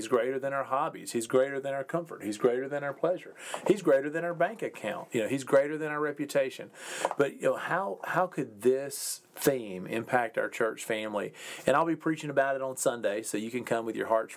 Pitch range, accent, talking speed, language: 115-145 Hz, American, 230 wpm, English